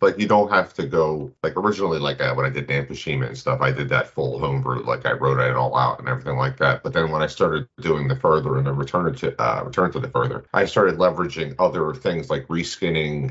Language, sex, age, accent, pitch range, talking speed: English, male, 40-59, American, 70-105 Hz, 250 wpm